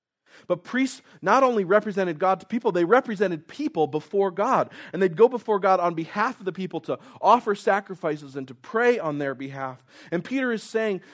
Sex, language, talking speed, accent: male, English, 195 wpm, American